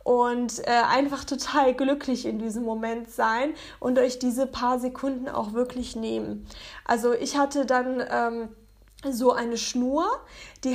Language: German